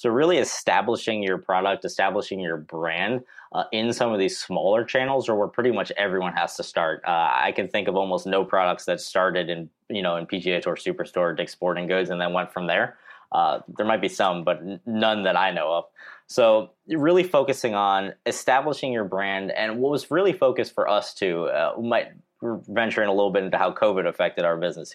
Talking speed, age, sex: 215 wpm, 20-39, male